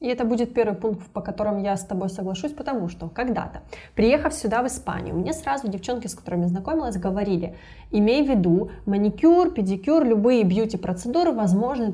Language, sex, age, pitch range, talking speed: Russian, female, 20-39, 185-245 Hz, 165 wpm